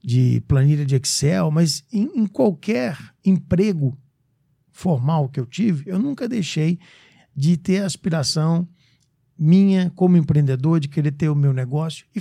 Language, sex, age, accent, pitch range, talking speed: English, male, 60-79, Brazilian, 150-190 Hz, 145 wpm